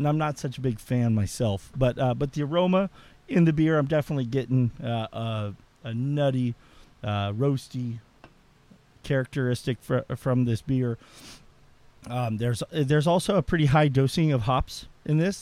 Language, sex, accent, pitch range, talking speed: English, male, American, 115-140 Hz, 160 wpm